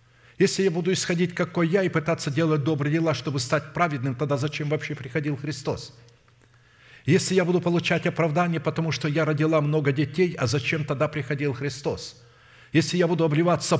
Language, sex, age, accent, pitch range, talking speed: Russian, male, 50-69, native, 120-150 Hz, 170 wpm